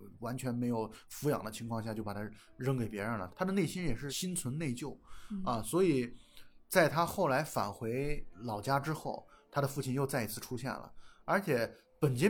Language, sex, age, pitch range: Chinese, male, 20-39, 115-160 Hz